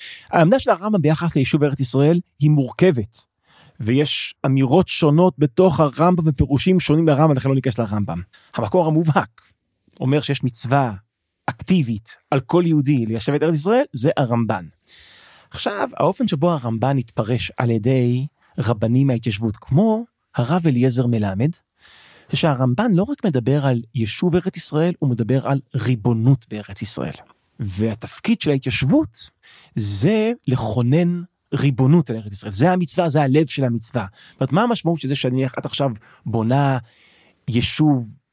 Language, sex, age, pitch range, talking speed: Hebrew, male, 40-59, 120-170 Hz, 140 wpm